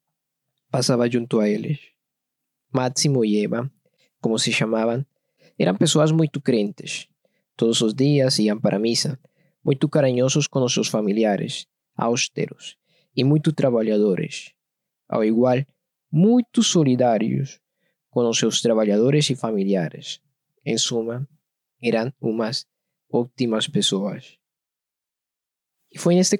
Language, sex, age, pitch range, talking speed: Portuguese, male, 20-39, 115-160 Hz, 115 wpm